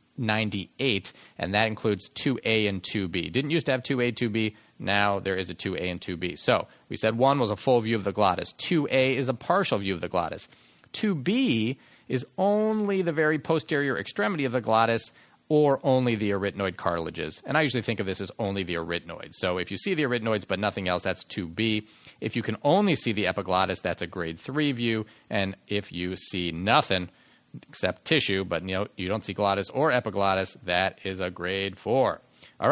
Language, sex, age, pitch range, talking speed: English, male, 40-59, 95-135 Hz, 200 wpm